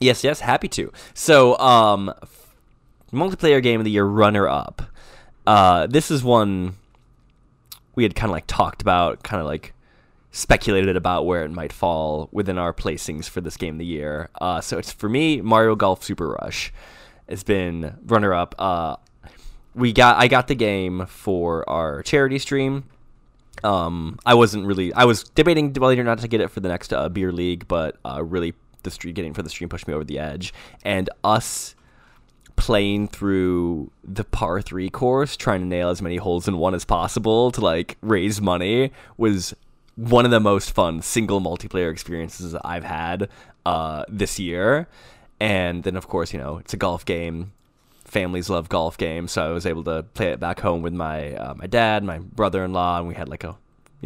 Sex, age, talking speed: male, 20-39, 190 wpm